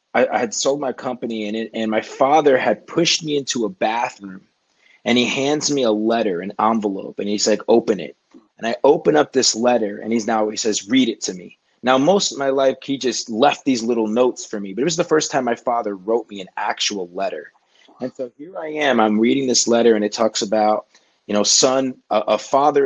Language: English